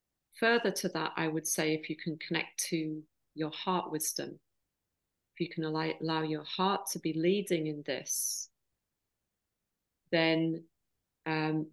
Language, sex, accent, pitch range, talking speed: English, female, British, 160-180 Hz, 140 wpm